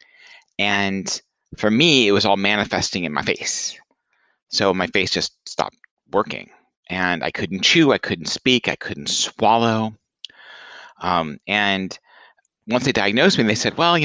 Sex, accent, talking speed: male, American, 155 wpm